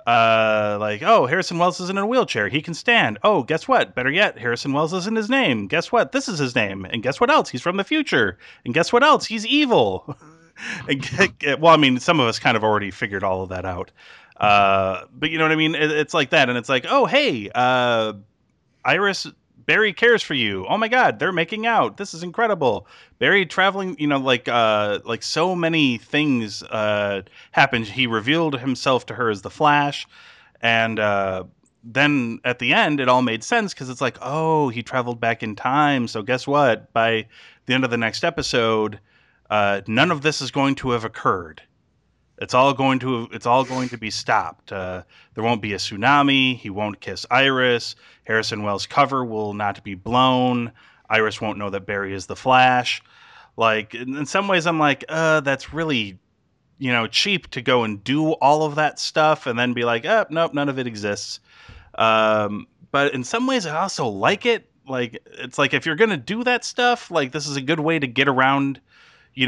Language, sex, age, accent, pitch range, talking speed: English, male, 30-49, American, 110-160 Hz, 205 wpm